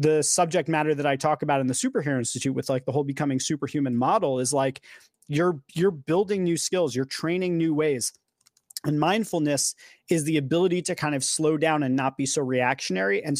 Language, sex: English, male